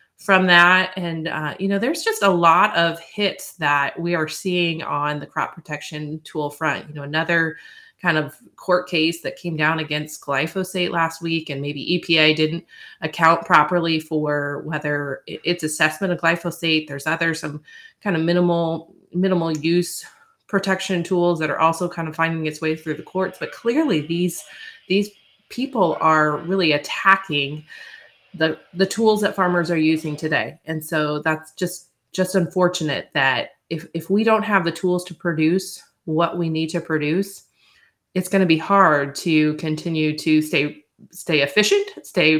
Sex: female